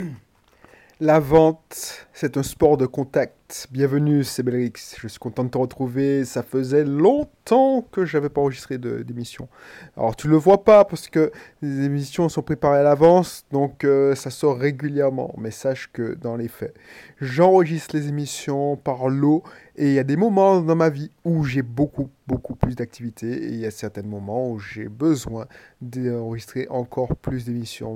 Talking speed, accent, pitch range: 180 wpm, French, 120-145 Hz